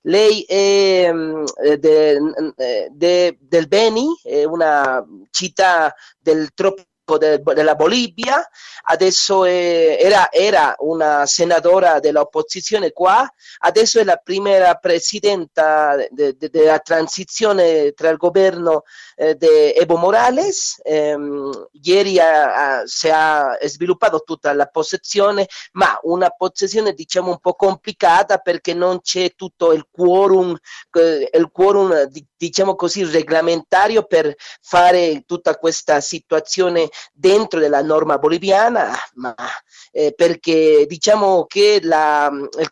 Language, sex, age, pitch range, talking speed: Italian, male, 40-59, 165-225 Hz, 115 wpm